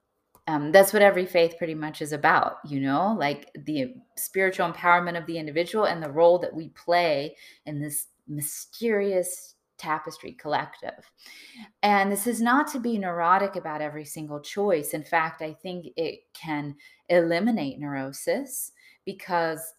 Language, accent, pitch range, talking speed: English, American, 155-195 Hz, 150 wpm